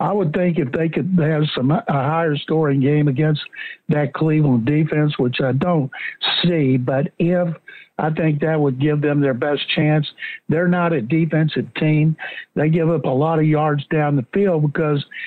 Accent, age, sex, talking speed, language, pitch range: American, 60-79, male, 185 wpm, English, 140-170 Hz